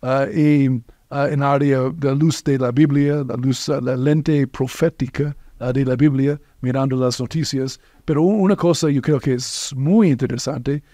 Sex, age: male, 50-69